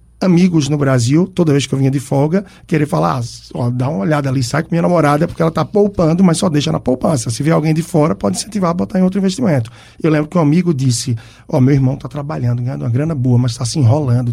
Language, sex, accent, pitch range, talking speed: Portuguese, male, Brazilian, 130-180 Hz, 265 wpm